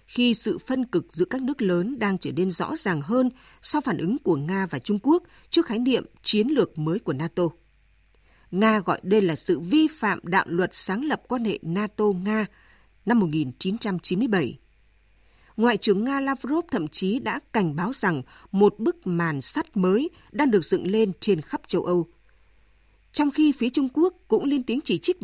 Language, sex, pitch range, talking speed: Vietnamese, female, 175-255 Hz, 190 wpm